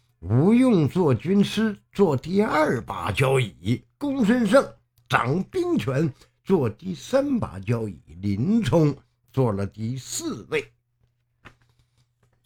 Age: 50-69